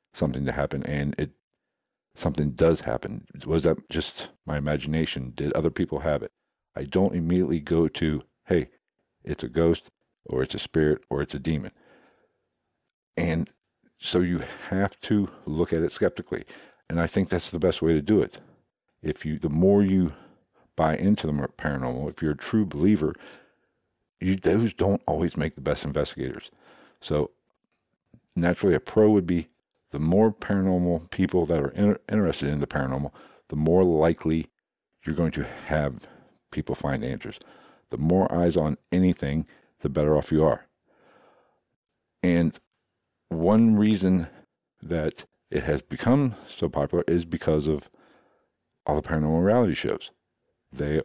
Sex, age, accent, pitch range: male, 50-69, American, 75-90 Hz